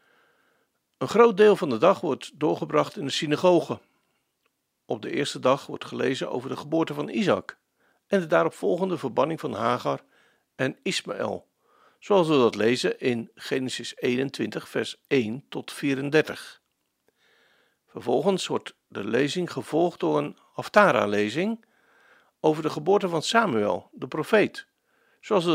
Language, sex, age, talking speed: Dutch, male, 50-69, 140 wpm